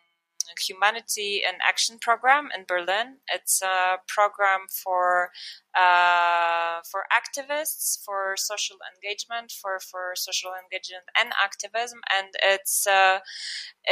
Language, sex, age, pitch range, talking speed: English, female, 20-39, 185-220 Hz, 110 wpm